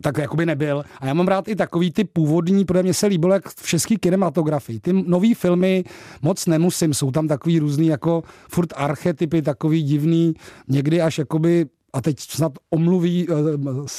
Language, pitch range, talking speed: Czech, 145-175 Hz, 175 wpm